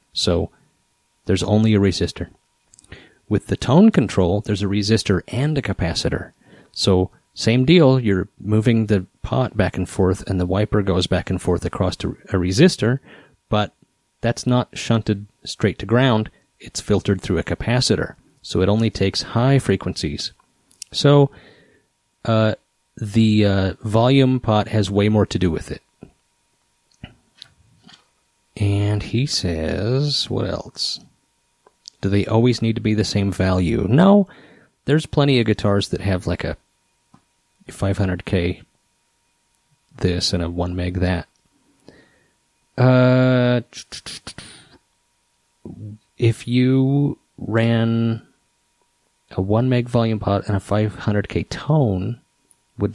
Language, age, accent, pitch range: English, 30-49, American, 95-120 Hz